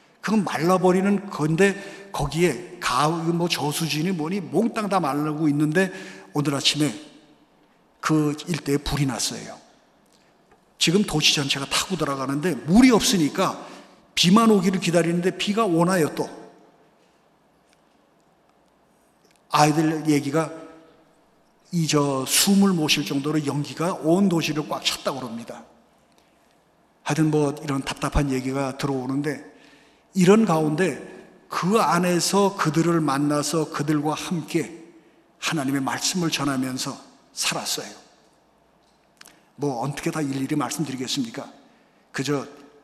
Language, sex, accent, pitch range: Korean, male, native, 145-175 Hz